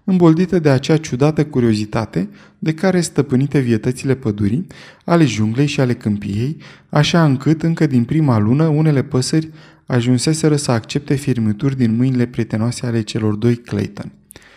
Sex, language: male, Romanian